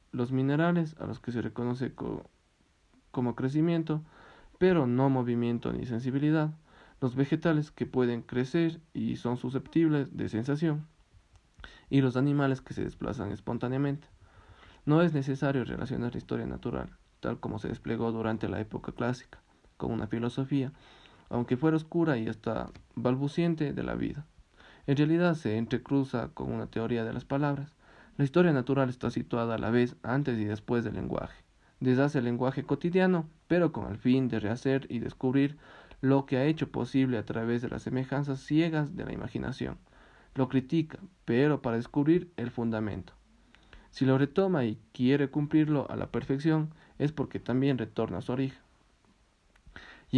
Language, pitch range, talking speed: Spanish, 120-145 Hz, 155 wpm